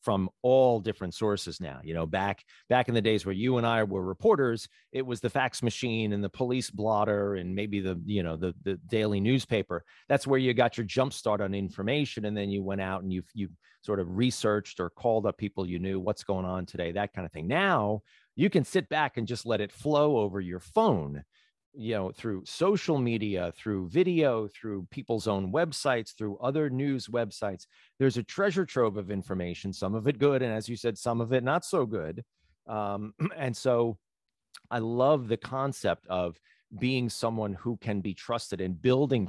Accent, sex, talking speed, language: American, male, 200 wpm, English